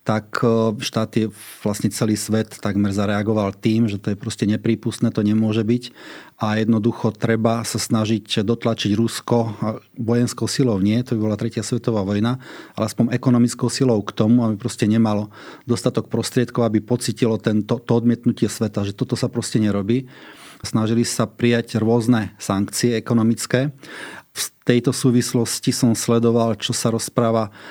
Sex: male